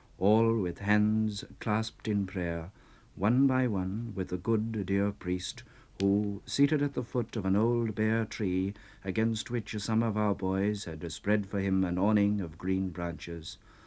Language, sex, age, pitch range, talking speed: English, male, 60-79, 95-115 Hz, 170 wpm